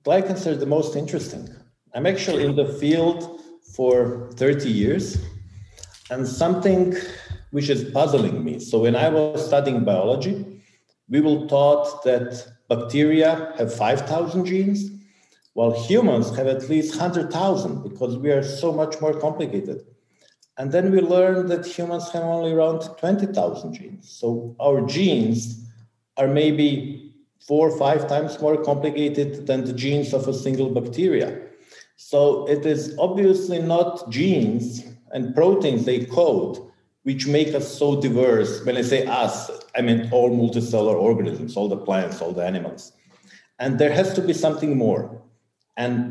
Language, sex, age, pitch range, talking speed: English, male, 50-69, 120-165 Hz, 145 wpm